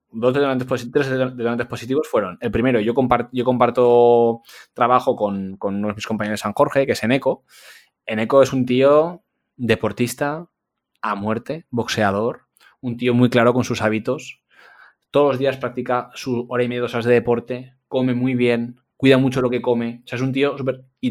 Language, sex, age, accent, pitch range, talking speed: Spanish, male, 20-39, Spanish, 110-130 Hz, 190 wpm